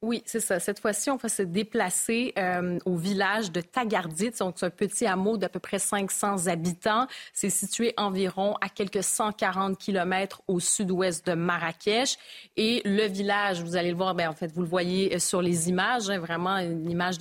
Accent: Canadian